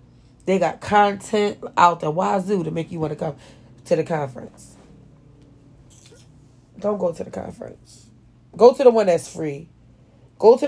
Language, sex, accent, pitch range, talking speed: English, female, American, 130-185 Hz, 155 wpm